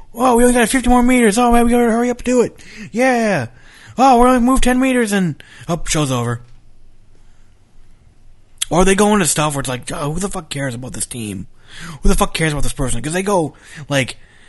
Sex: male